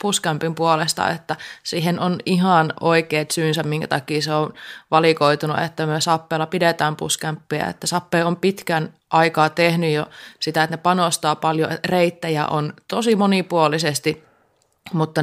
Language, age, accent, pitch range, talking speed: Finnish, 20-39, native, 150-170 Hz, 140 wpm